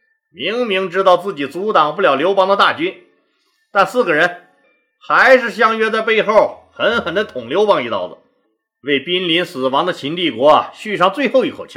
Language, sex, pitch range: Chinese, male, 200-295 Hz